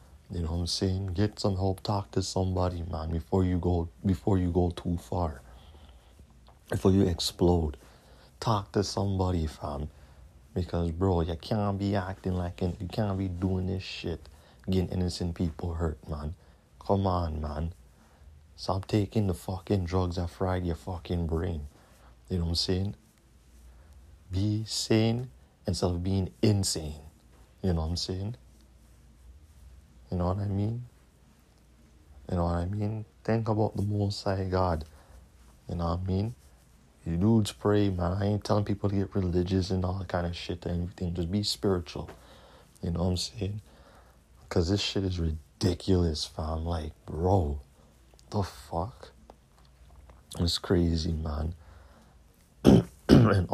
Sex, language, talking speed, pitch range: male, English, 155 wpm, 80-100 Hz